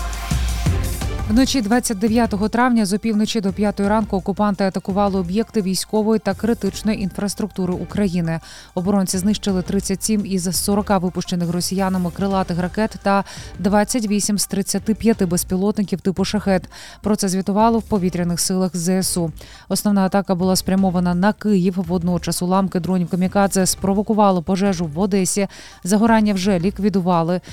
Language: Ukrainian